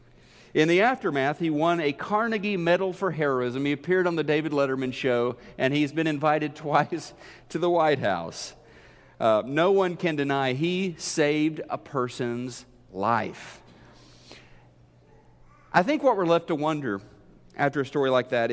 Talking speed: 155 wpm